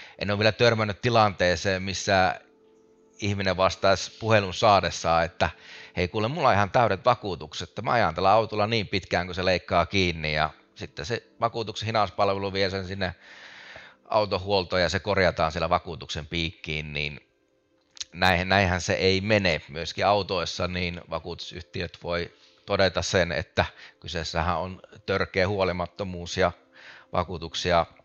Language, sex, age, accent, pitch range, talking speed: Finnish, male, 30-49, native, 85-100 Hz, 135 wpm